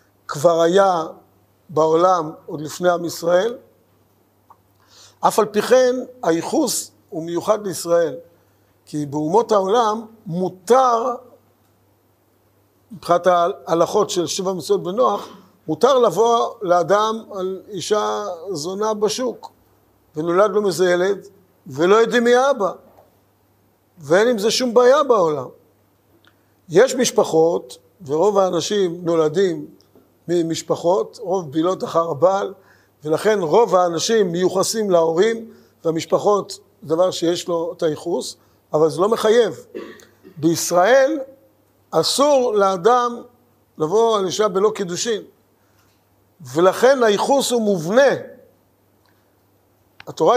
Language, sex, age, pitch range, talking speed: Hebrew, male, 50-69, 155-220 Hz, 100 wpm